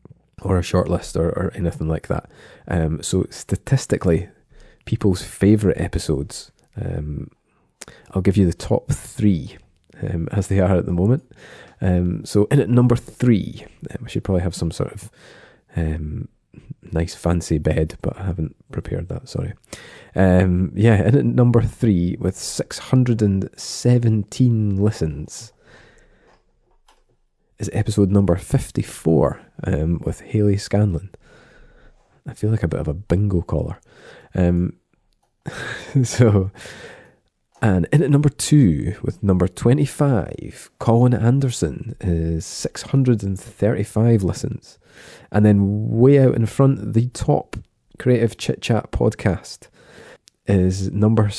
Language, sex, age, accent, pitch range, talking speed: English, male, 20-39, British, 90-115 Hz, 125 wpm